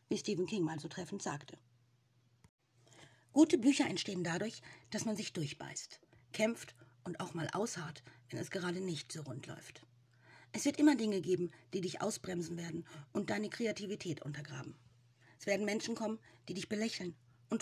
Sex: female